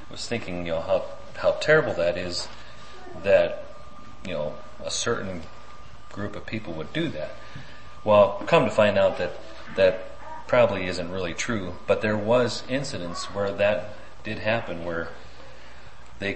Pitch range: 80-110 Hz